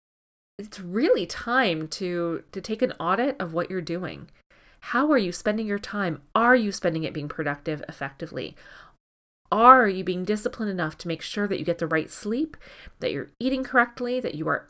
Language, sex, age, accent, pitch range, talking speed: English, female, 30-49, American, 165-225 Hz, 190 wpm